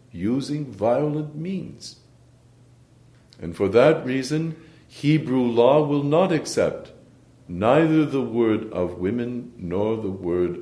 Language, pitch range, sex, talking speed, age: English, 105-140 Hz, male, 115 wpm, 60-79